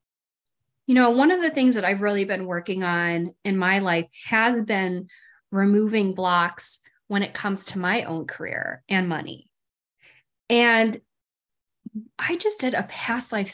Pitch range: 180-230 Hz